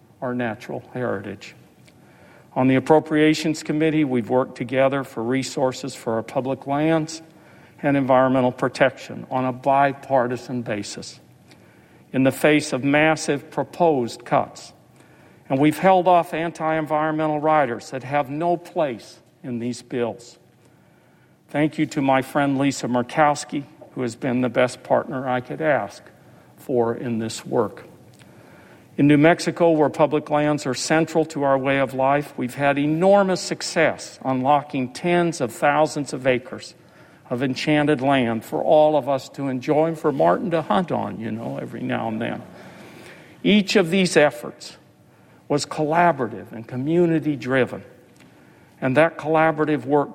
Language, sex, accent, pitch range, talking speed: English, male, American, 125-155 Hz, 140 wpm